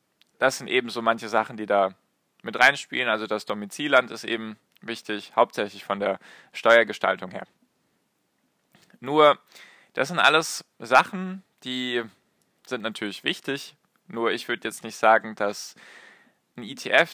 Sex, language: male, German